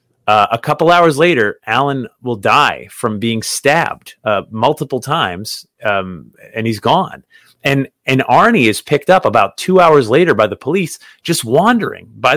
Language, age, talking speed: English, 30-49, 165 wpm